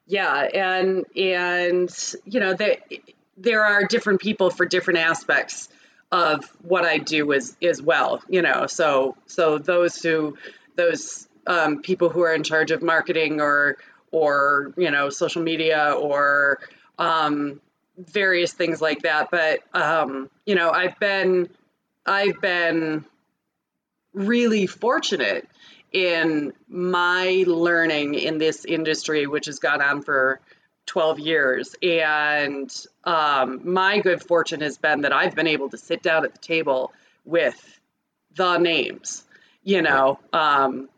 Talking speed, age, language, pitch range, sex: 135 wpm, 30-49, English, 150-180 Hz, female